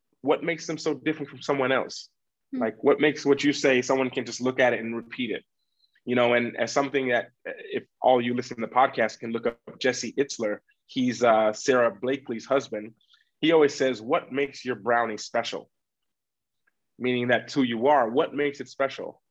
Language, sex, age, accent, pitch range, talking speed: English, male, 20-39, American, 120-145 Hz, 195 wpm